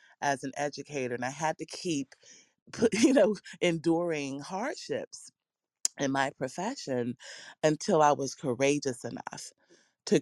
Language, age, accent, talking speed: English, 30-49, American, 125 wpm